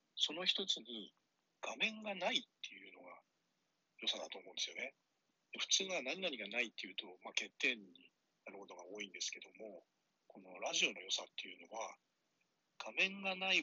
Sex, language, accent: male, Japanese, native